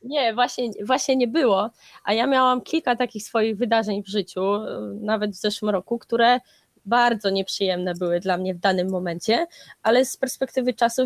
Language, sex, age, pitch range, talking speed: Polish, female, 20-39, 205-240 Hz, 170 wpm